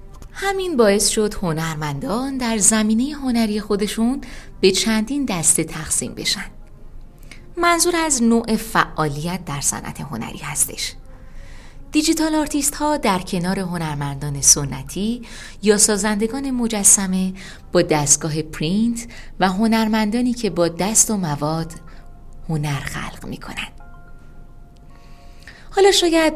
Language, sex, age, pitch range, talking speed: Persian, female, 20-39, 155-225 Hz, 105 wpm